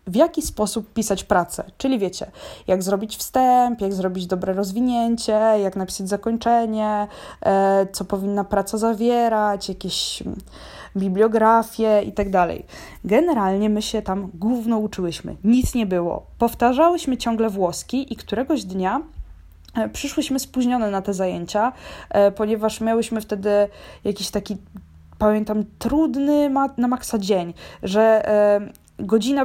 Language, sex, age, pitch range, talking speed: Polish, female, 20-39, 195-240 Hz, 120 wpm